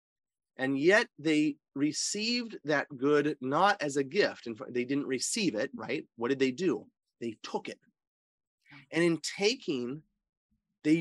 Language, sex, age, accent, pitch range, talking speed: English, male, 30-49, American, 130-185 Hz, 155 wpm